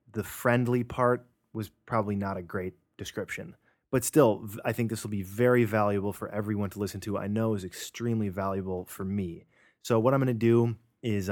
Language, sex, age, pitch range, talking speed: English, male, 20-39, 100-120 Hz, 195 wpm